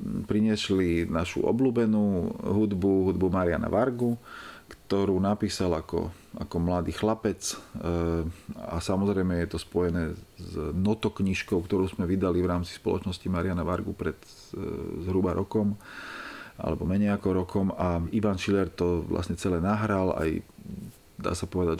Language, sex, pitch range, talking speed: Slovak, male, 90-100 Hz, 130 wpm